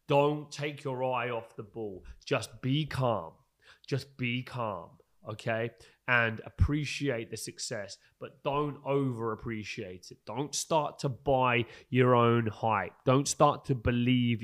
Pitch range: 110-135 Hz